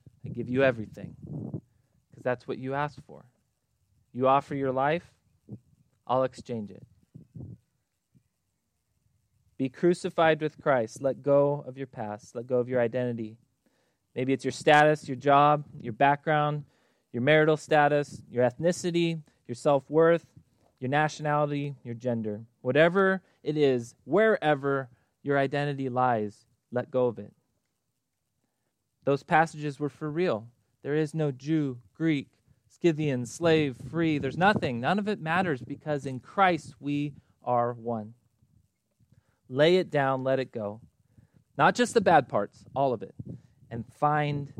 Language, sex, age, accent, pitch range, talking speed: English, male, 20-39, American, 120-150 Hz, 135 wpm